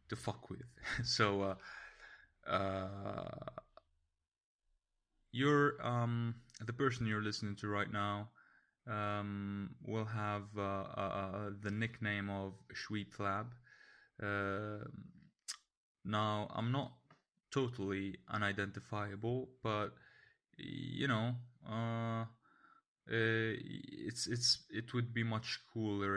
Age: 20-39